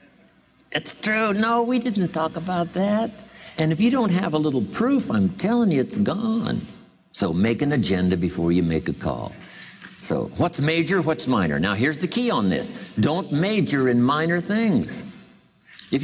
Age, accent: 60-79, American